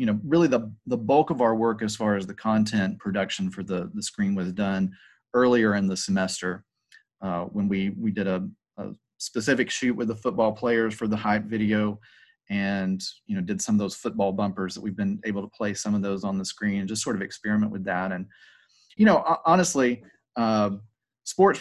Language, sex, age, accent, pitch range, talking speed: English, male, 30-49, American, 100-120 Hz, 210 wpm